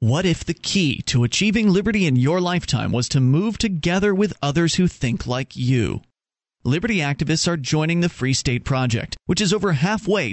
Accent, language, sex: American, English, male